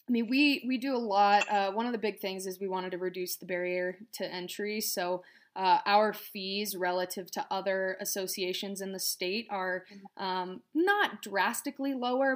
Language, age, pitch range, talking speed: English, 20-39, 185-210 Hz, 185 wpm